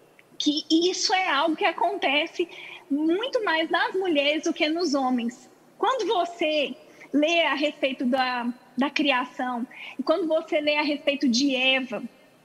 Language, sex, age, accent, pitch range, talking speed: Portuguese, female, 20-39, Brazilian, 290-385 Hz, 140 wpm